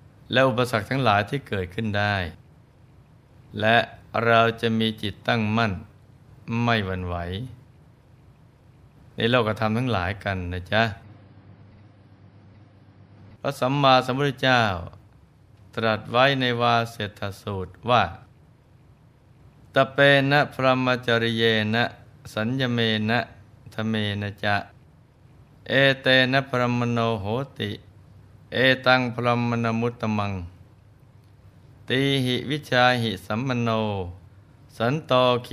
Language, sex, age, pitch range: Thai, male, 20-39, 105-130 Hz